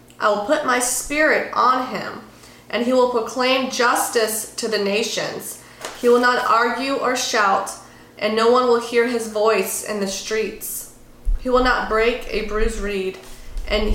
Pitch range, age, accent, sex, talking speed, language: 205-230 Hz, 30-49, American, female, 170 wpm, English